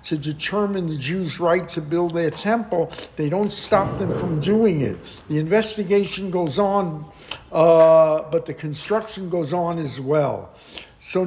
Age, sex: 60-79, male